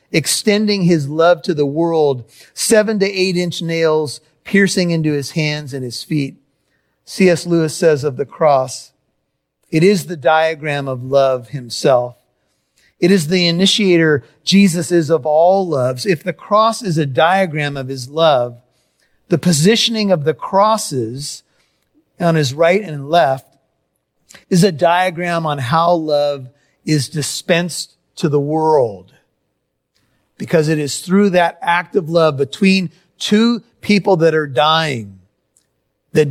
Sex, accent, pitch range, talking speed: male, American, 140-175 Hz, 140 wpm